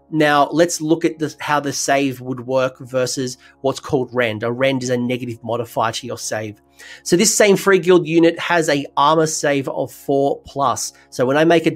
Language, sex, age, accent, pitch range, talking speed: English, male, 30-49, Australian, 130-160 Hz, 205 wpm